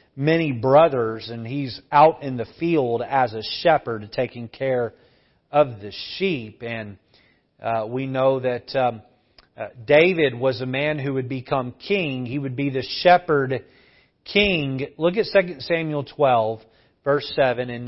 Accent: American